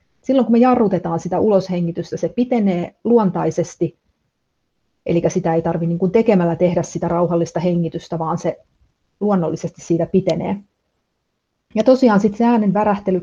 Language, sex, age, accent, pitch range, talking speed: Finnish, female, 30-49, native, 170-200 Hz, 135 wpm